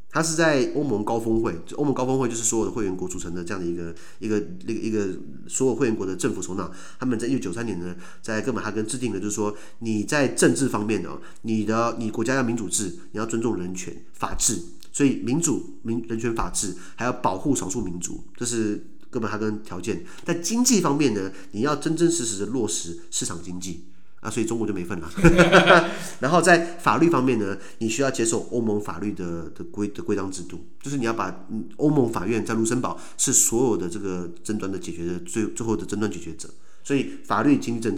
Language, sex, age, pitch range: Chinese, male, 30-49, 95-135 Hz